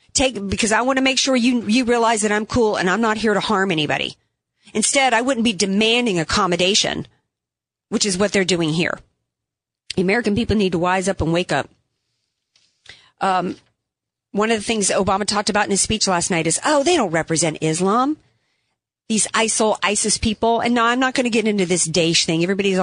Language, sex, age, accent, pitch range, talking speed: English, female, 40-59, American, 175-225 Hz, 200 wpm